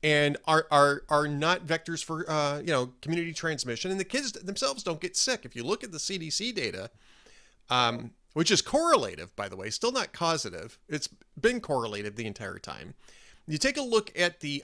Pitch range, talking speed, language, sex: 130-180 Hz, 195 wpm, English, male